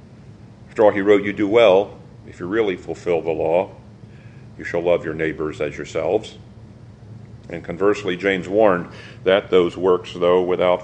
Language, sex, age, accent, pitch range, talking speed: English, male, 50-69, American, 95-115 Hz, 160 wpm